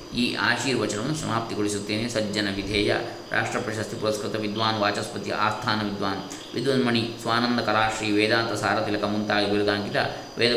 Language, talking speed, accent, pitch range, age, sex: Kannada, 115 wpm, native, 110-130 Hz, 20-39, male